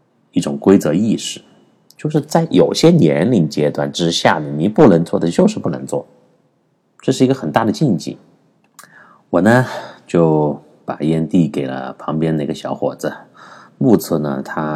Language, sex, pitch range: Chinese, male, 75-115 Hz